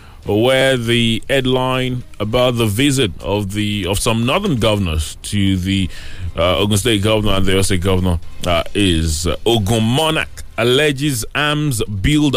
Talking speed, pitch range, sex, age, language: 150 wpm, 95-140 Hz, male, 30-49, English